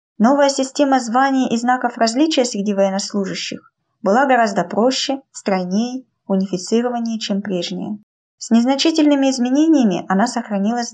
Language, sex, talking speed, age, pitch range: Russian, female, 110 wpm, 20-39, 210-275 Hz